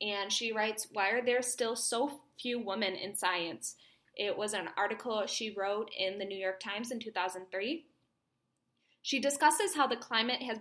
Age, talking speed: 20-39, 175 wpm